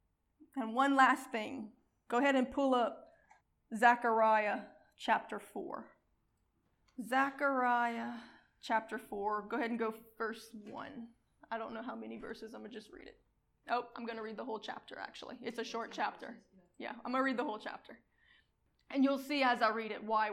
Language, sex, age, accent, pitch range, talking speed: English, female, 20-39, American, 225-275 Hz, 185 wpm